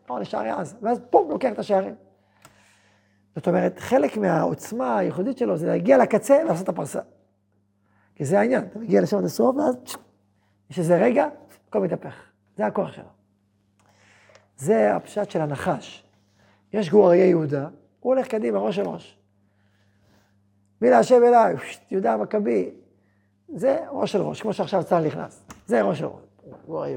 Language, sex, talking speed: Hebrew, male, 140 wpm